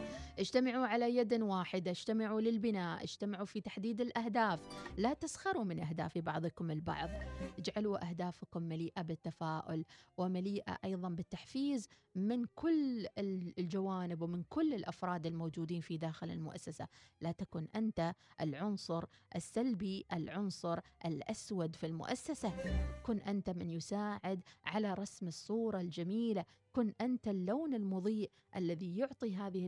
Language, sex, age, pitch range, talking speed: Arabic, female, 30-49, 170-230 Hz, 115 wpm